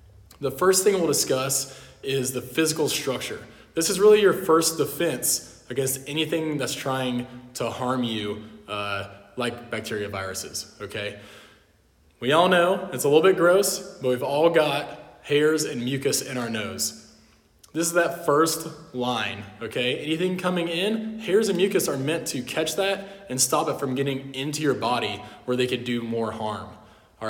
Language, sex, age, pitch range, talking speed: English, male, 20-39, 120-165 Hz, 170 wpm